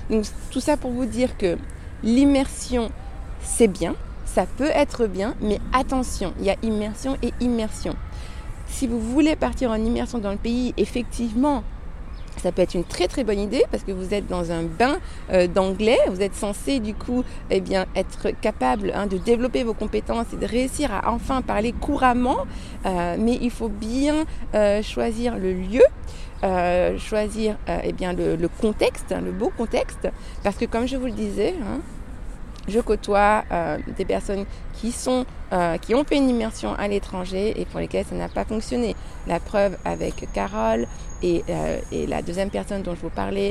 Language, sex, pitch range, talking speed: French, female, 185-245 Hz, 180 wpm